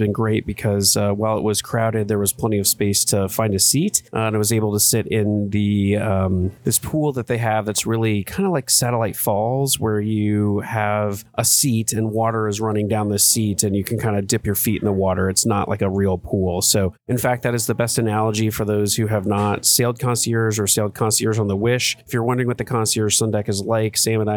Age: 30-49